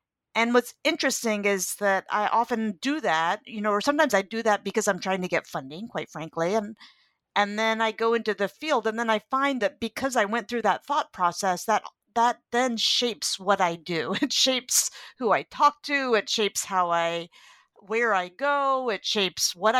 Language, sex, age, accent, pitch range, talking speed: English, female, 50-69, American, 190-240 Hz, 205 wpm